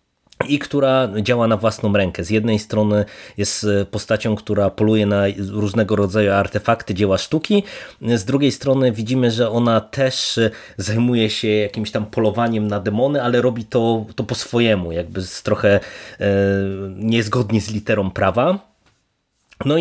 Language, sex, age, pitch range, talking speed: Polish, male, 20-39, 100-120 Hz, 145 wpm